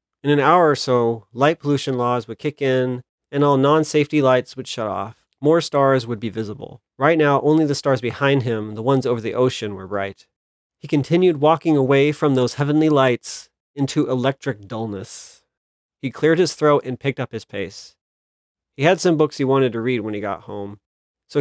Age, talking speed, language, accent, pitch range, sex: 30-49, 200 wpm, English, American, 115-150 Hz, male